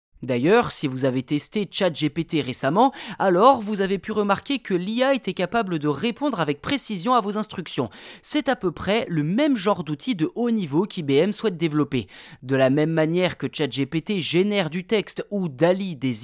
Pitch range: 150-220 Hz